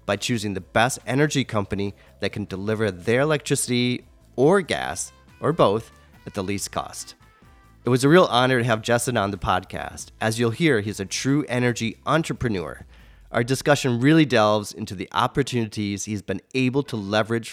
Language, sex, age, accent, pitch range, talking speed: English, male, 30-49, American, 95-130 Hz, 170 wpm